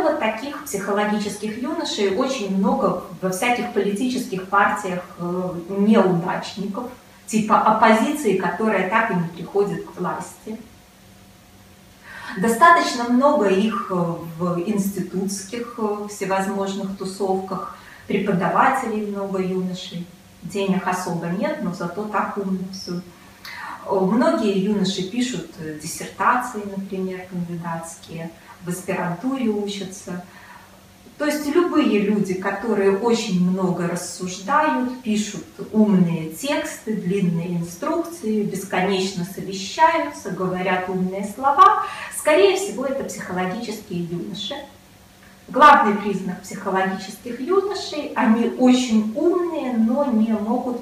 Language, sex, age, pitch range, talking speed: Russian, female, 30-49, 185-235 Hz, 95 wpm